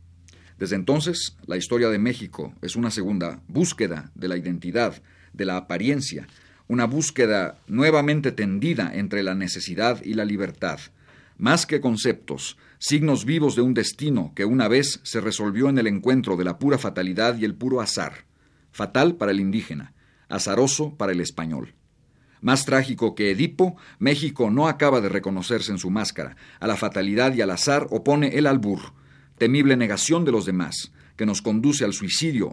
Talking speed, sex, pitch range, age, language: 165 wpm, male, 95-135 Hz, 50-69, Spanish